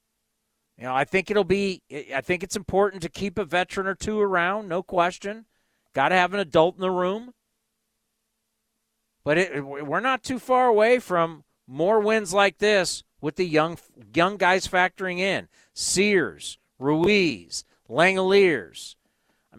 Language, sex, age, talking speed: English, male, 50-69, 155 wpm